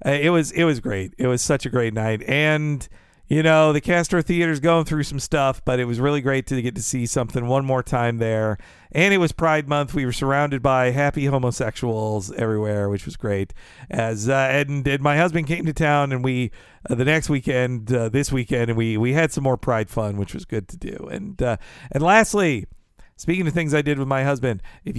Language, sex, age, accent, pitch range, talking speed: English, male, 50-69, American, 125-165 Hz, 225 wpm